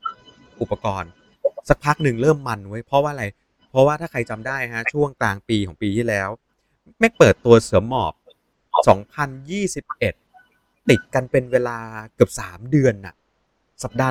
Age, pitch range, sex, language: 30-49, 100-130 Hz, male, Thai